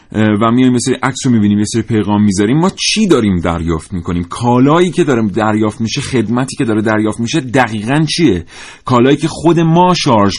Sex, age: male, 40-59